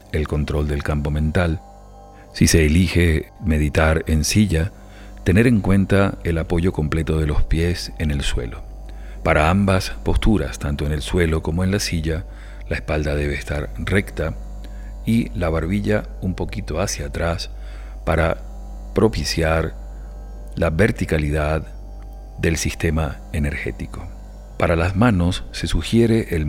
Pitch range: 80-100 Hz